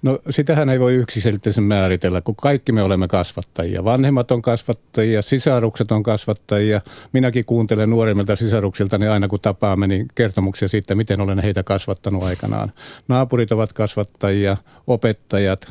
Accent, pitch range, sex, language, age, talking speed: native, 100-130 Hz, male, Finnish, 50-69, 140 wpm